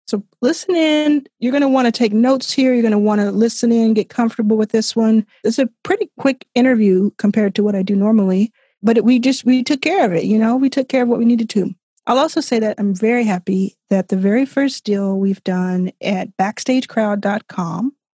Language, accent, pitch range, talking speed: English, American, 205-250 Hz, 215 wpm